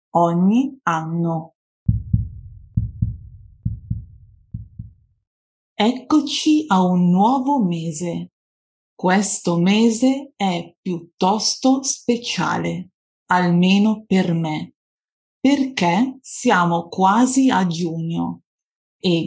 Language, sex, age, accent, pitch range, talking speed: Italian, female, 30-49, native, 170-220 Hz, 65 wpm